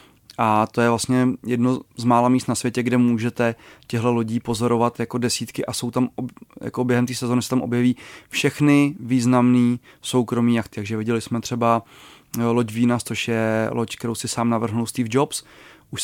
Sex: male